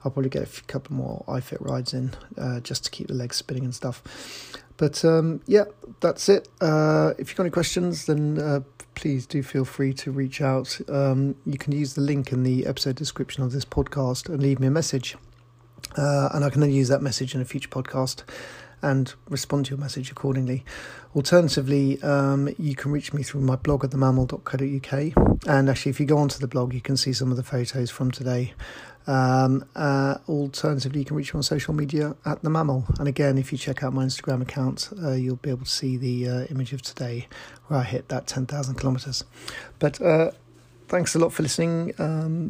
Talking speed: 210 wpm